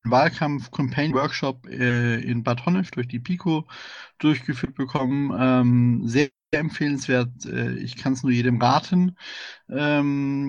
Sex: male